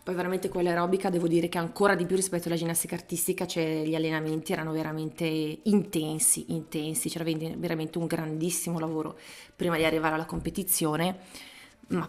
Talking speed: 160 wpm